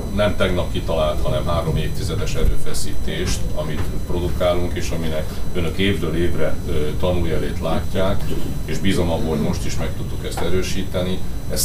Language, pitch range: Hungarian, 85-95 Hz